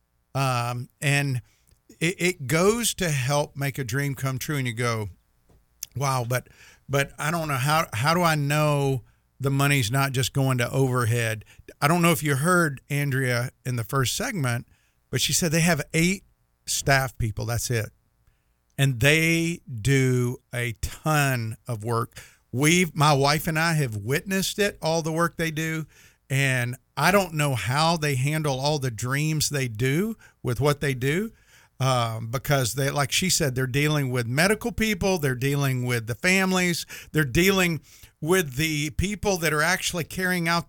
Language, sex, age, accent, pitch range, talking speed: English, male, 50-69, American, 125-165 Hz, 170 wpm